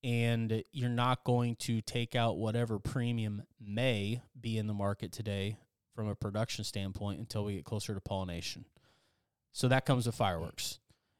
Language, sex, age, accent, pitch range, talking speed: English, male, 30-49, American, 105-125 Hz, 160 wpm